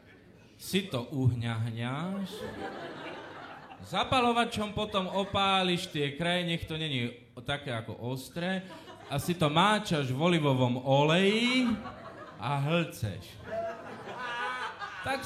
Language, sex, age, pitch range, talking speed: English, male, 30-49, 125-190 Hz, 95 wpm